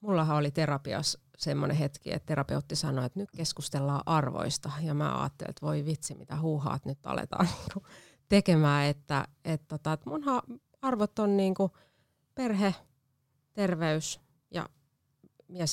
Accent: native